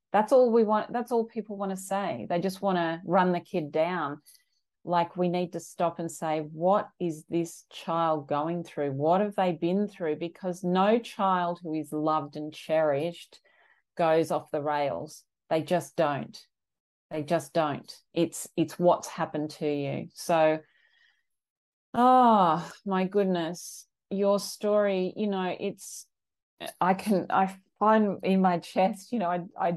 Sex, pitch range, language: female, 155-190 Hz, English